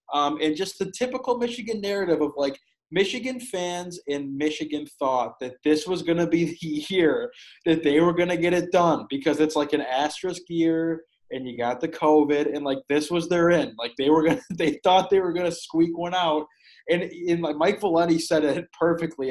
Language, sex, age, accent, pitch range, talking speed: English, male, 20-39, American, 135-170 Hz, 215 wpm